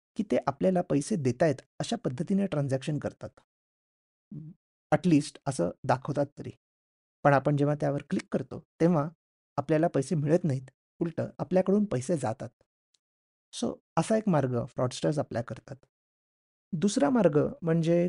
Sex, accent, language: male, native, Marathi